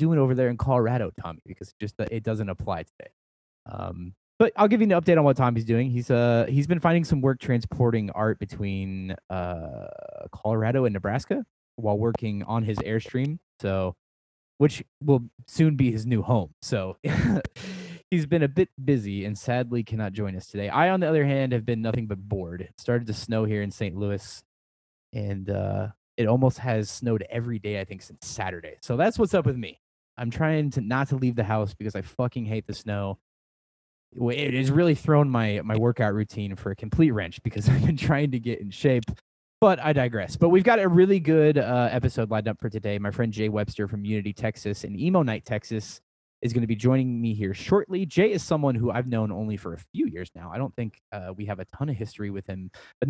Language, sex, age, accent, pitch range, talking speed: English, male, 20-39, American, 100-135 Hz, 215 wpm